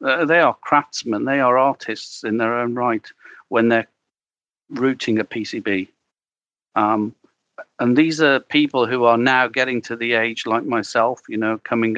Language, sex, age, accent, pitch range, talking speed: English, male, 50-69, British, 110-130 Hz, 165 wpm